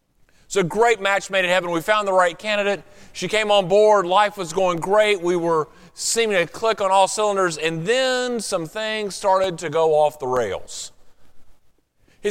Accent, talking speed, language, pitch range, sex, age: American, 190 wpm, English, 180-250 Hz, male, 30-49